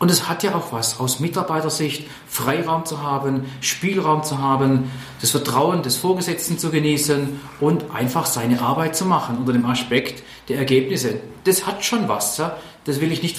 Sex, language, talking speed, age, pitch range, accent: male, German, 175 wpm, 40-59, 125-165 Hz, German